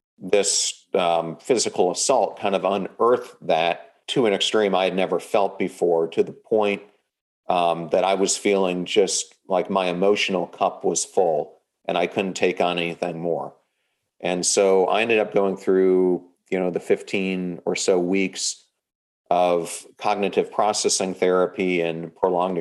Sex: male